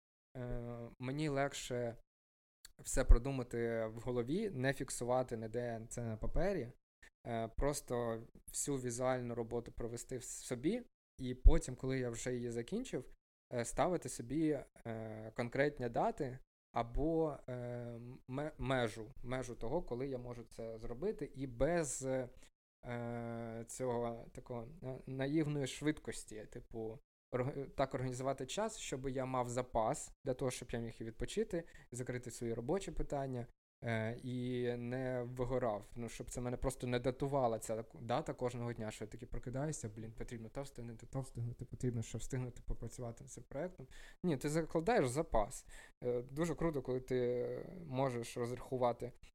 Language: Ukrainian